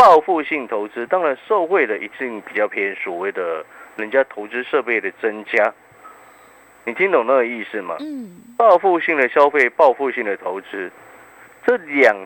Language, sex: Chinese, male